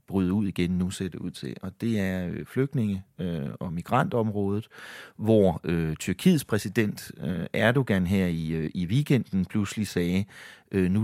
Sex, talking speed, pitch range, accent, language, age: male, 130 wpm, 85-110 Hz, Danish, English, 40-59